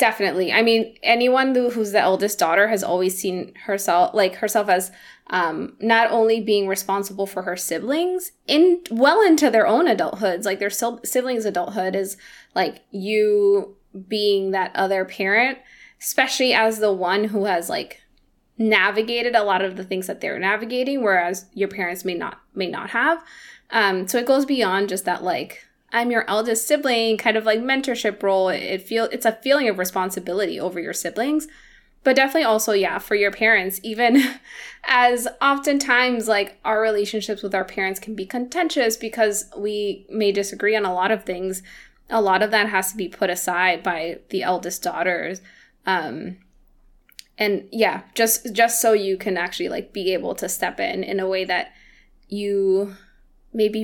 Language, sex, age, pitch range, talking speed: English, female, 20-39, 190-235 Hz, 170 wpm